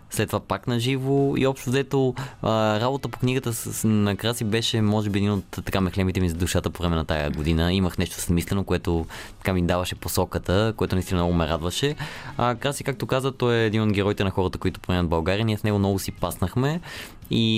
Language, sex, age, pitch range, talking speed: Bulgarian, male, 20-39, 85-110 Hz, 220 wpm